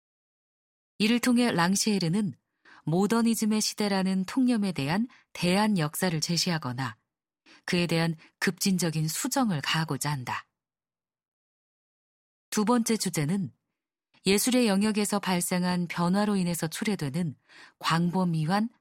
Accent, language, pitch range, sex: native, Korean, 160-210 Hz, female